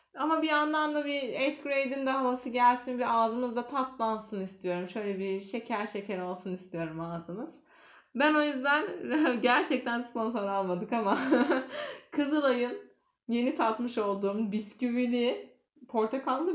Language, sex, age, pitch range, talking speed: Turkish, female, 20-39, 200-255 Hz, 125 wpm